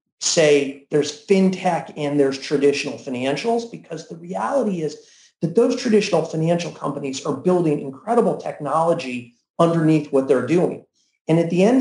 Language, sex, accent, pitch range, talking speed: English, male, American, 155-215 Hz, 140 wpm